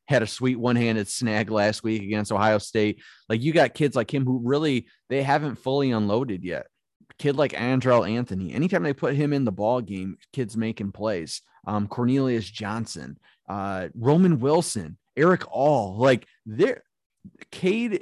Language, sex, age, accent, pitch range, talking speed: English, male, 30-49, American, 105-130 Hz, 165 wpm